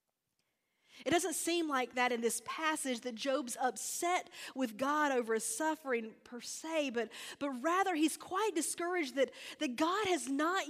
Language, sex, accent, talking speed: English, female, American, 165 wpm